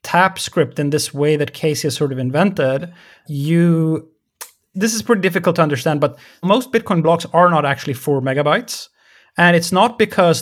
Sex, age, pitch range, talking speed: male, 30-49, 150-185 Hz, 180 wpm